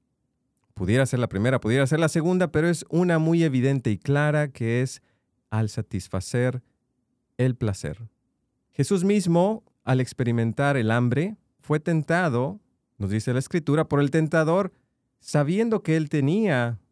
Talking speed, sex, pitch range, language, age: 140 wpm, male, 110-150 Hz, English, 40-59